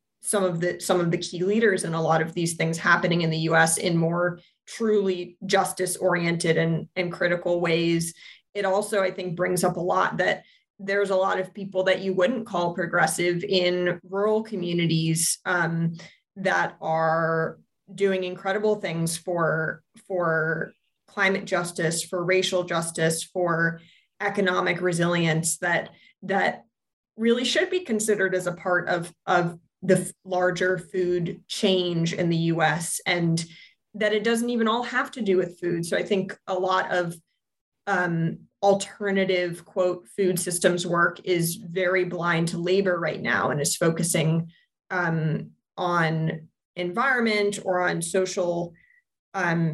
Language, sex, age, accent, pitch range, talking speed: English, female, 20-39, American, 170-190 Hz, 145 wpm